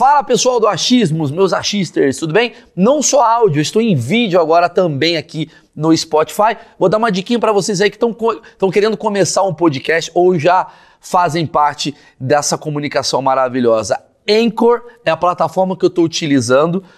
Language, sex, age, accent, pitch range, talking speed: Portuguese, male, 30-49, Brazilian, 170-230 Hz, 165 wpm